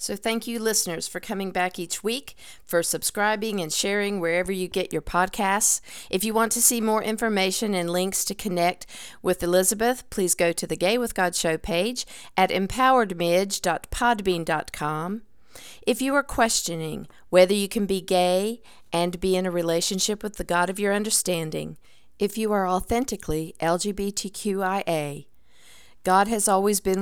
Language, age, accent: English, 50-69, American